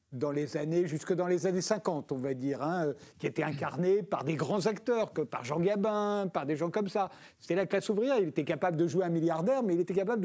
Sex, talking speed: male, 245 wpm